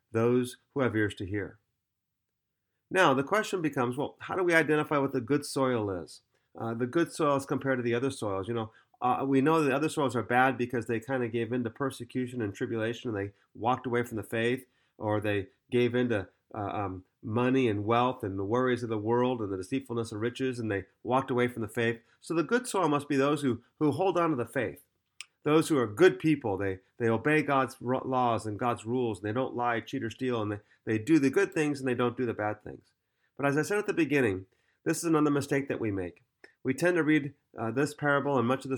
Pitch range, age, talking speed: 115-140 Hz, 30-49, 245 wpm